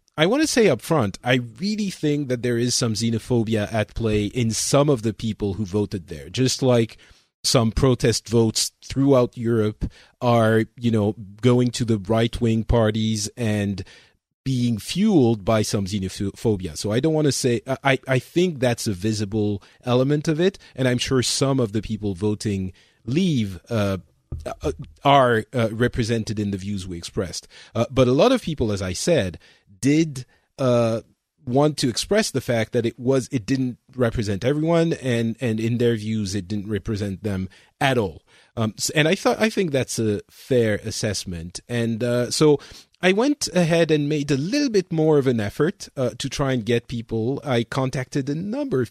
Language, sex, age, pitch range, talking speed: English, male, 40-59, 110-140 Hz, 185 wpm